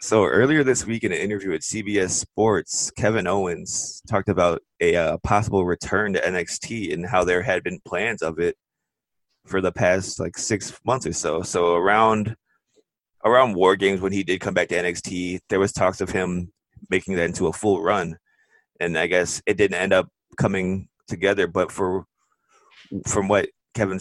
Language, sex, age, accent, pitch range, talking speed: English, male, 20-39, American, 85-100 Hz, 180 wpm